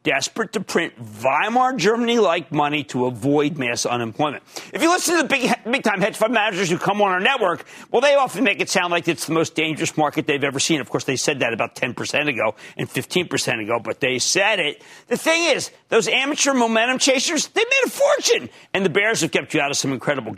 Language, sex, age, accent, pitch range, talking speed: English, male, 40-59, American, 140-225 Hz, 220 wpm